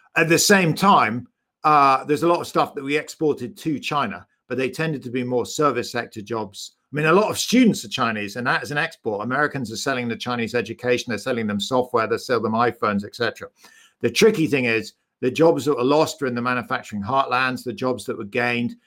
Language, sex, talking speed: English, male, 225 wpm